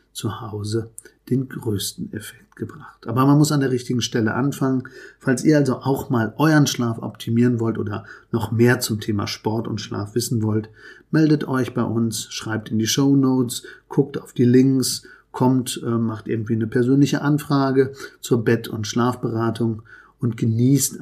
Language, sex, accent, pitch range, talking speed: German, male, German, 110-135 Hz, 165 wpm